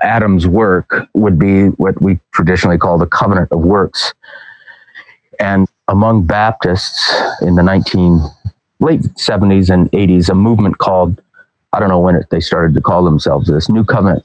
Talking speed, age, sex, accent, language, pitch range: 155 wpm, 40-59, male, American, English, 90-105 Hz